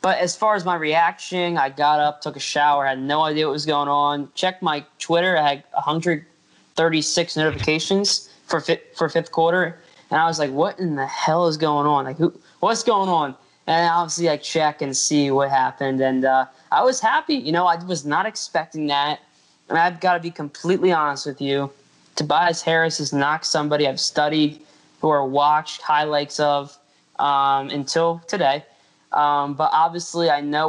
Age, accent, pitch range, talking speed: 20-39, American, 145-175 Hz, 185 wpm